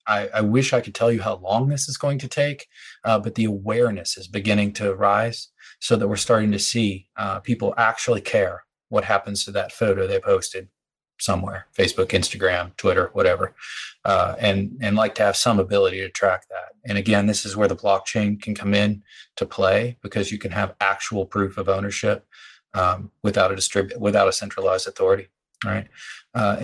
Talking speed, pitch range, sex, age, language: 185 wpm, 100-120 Hz, male, 30-49, English